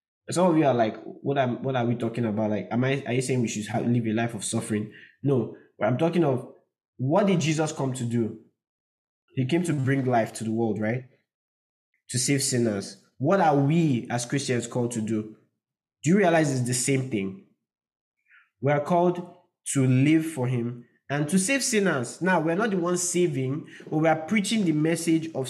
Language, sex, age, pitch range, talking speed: English, male, 20-39, 125-175 Hz, 205 wpm